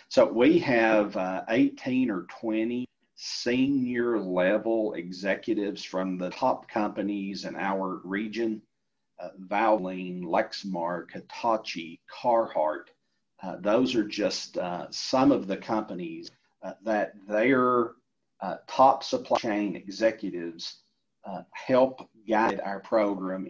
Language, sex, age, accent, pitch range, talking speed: English, male, 40-59, American, 95-110 Hz, 110 wpm